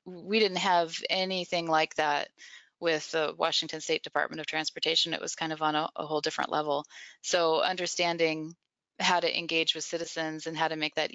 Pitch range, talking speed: 160-185 Hz, 190 wpm